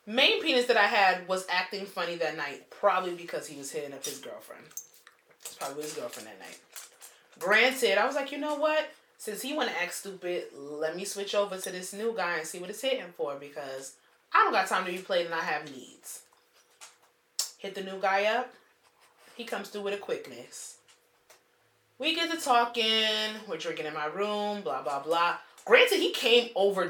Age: 20-39